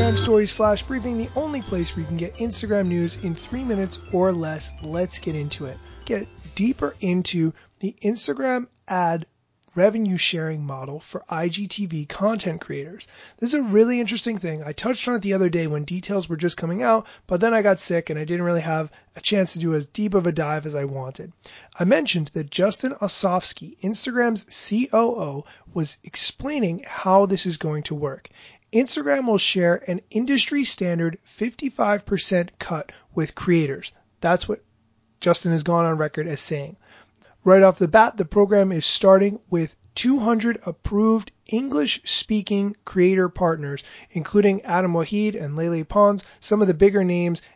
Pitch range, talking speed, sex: 165-215 Hz, 170 wpm, male